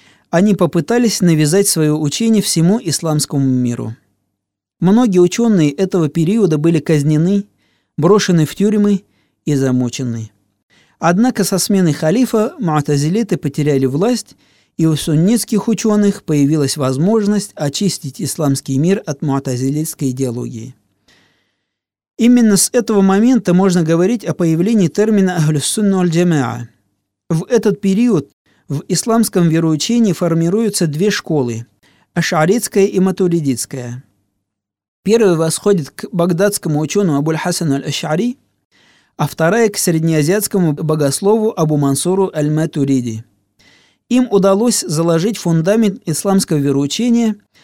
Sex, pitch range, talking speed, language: male, 140-200 Hz, 100 wpm, Russian